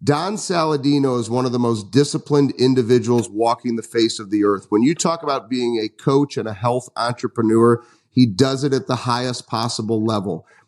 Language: English